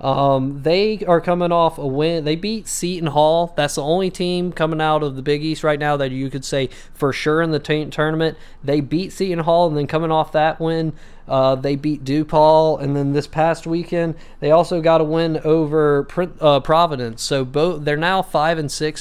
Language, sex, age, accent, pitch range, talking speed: English, male, 20-39, American, 135-160 Hz, 210 wpm